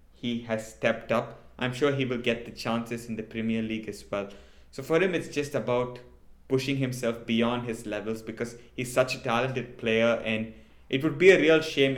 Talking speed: 205 wpm